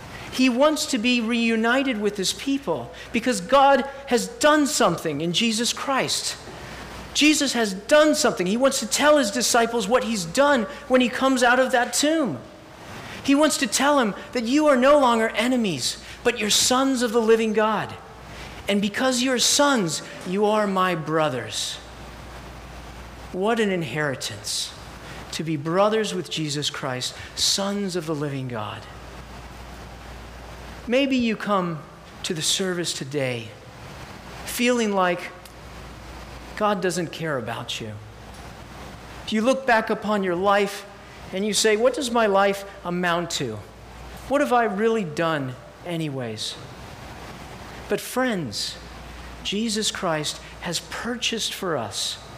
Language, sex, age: English, male, 40-59